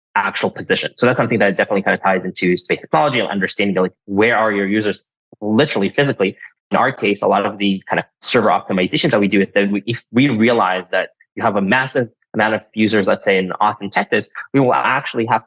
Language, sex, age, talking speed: English, male, 20-39, 225 wpm